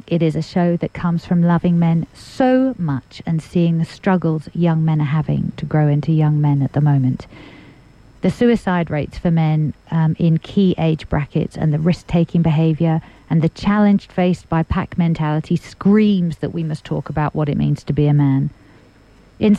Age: 50-69